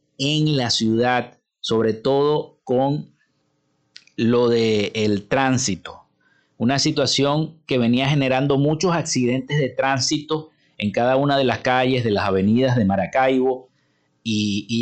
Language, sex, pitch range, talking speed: Spanish, male, 115-150 Hz, 125 wpm